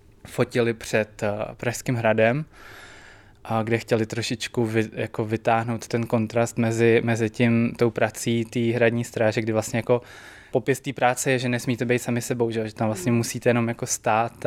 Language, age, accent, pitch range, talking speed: Czech, 20-39, native, 115-120 Hz, 170 wpm